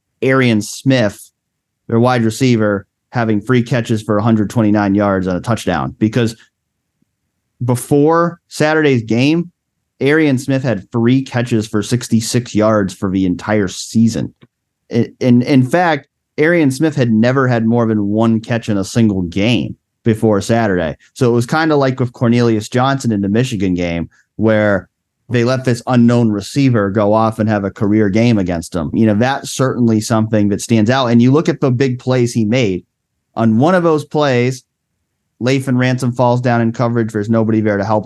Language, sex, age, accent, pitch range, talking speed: English, male, 30-49, American, 105-125 Hz, 175 wpm